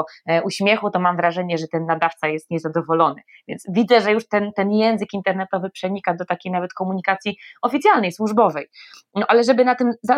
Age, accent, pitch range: 20-39, native, 170-210 Hz